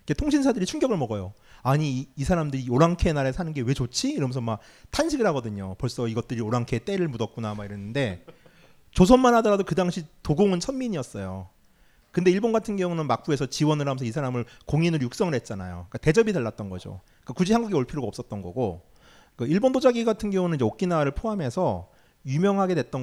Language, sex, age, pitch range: Korean, male, 30-49, 110-175 Hz